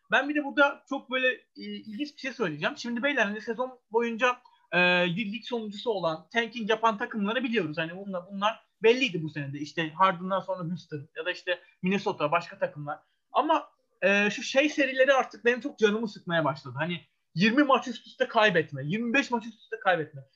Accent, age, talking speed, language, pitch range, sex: native, 30-49, 180 wpm, Turkish, 180-255 Hz, male